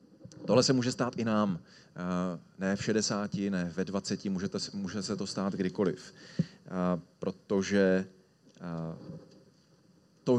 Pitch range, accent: 95-135 Hz, native